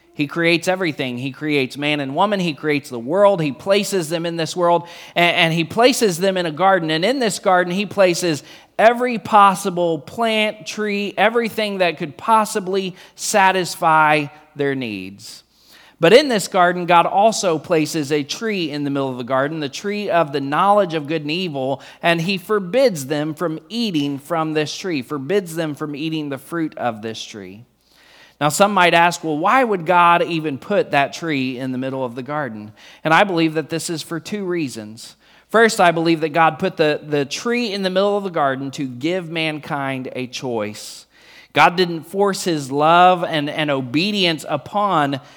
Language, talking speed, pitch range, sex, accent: English, 185 wpm, 150-195 Hz, male, American